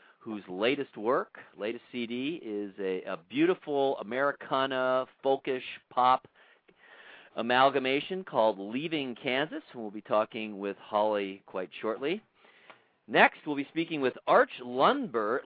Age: 50-69